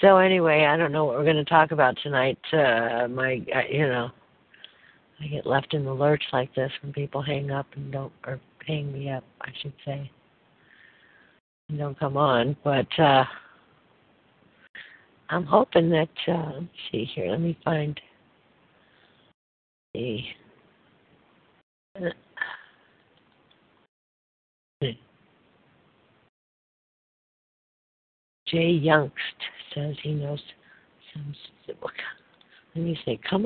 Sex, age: female, 60-79